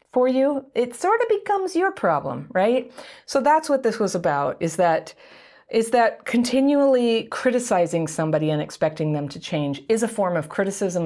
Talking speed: 175 wpm